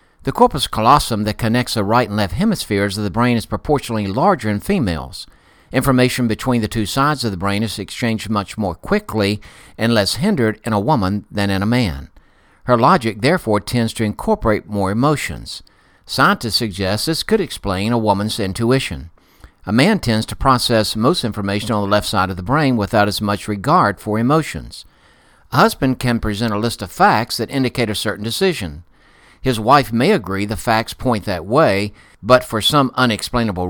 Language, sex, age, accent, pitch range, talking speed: English, male, 60-79, American, 100-125 Hz, 185 wpm